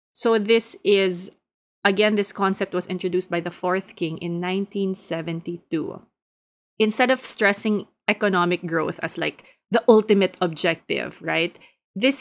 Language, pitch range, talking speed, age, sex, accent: English, 180-230 Hz, 130 wpm, 20-39, female, Filipino